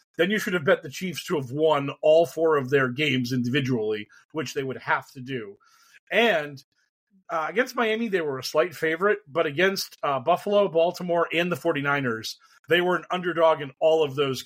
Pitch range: 135-180 Hz